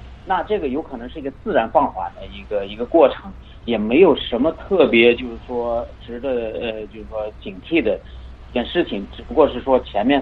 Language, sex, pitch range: Chinese, male, 110-165 Hz